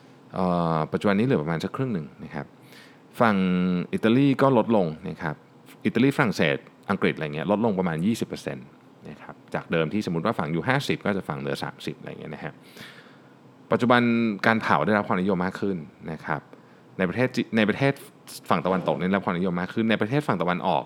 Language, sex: Thai, male